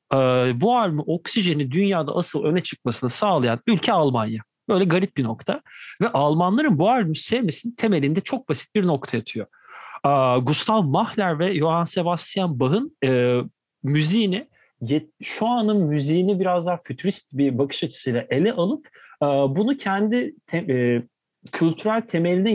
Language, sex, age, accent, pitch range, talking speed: Turkish, male, 40-59, native, 135-185 Hz, 130 wpm